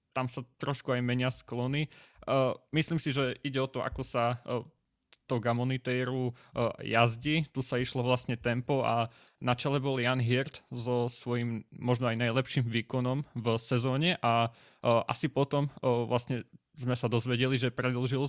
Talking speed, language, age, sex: 150 wpm, Slovak, 20-39, male